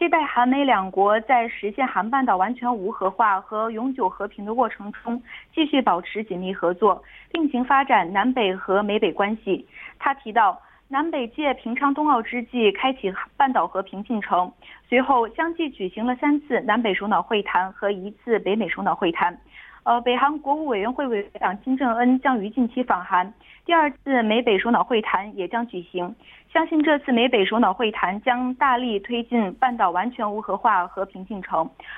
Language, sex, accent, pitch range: Korean, female, Chinese, 200-265 Hz